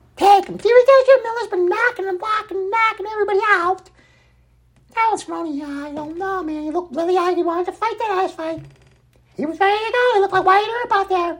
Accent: American